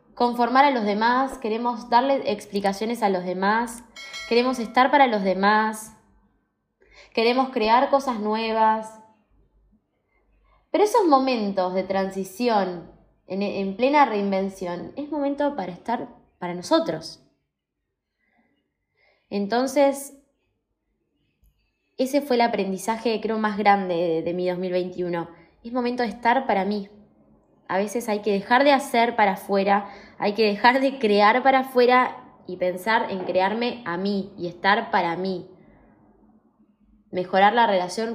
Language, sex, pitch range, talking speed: Spanish, female, 190-240 Hz, 125 wpm